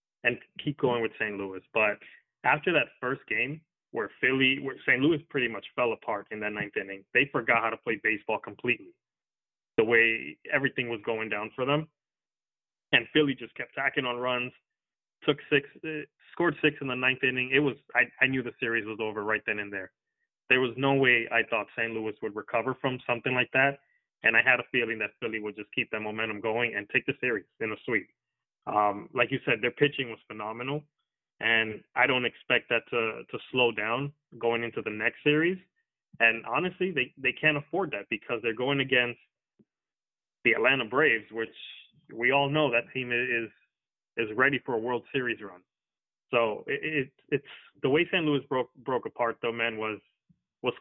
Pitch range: 115-145 Hz